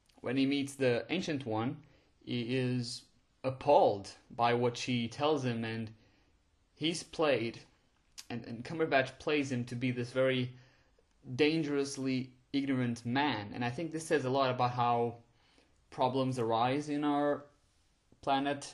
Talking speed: 140 wpm